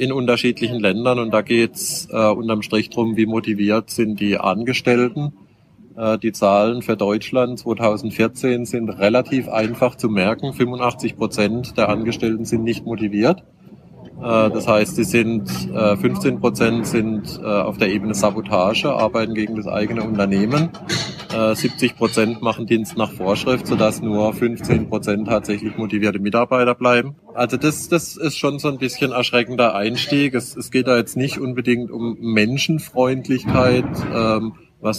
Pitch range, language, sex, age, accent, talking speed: 110-125 Hz, German, male, 20-39, German, 145 wpm